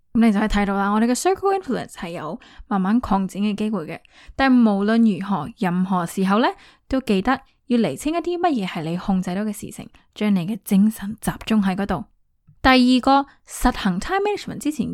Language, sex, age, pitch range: Chinese, female, 10-29, 195-265 Hz